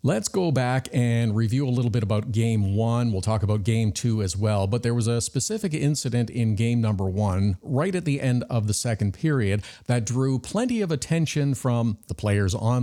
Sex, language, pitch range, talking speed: male, English, 110-135 Hz, 210 wpm